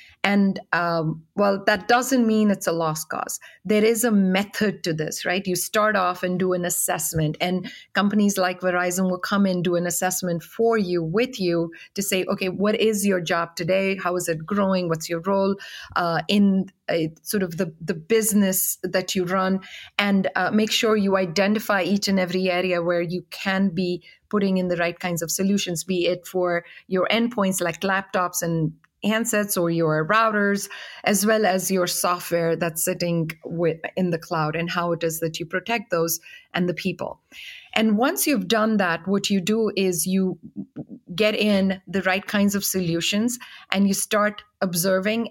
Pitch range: 175-205 Hz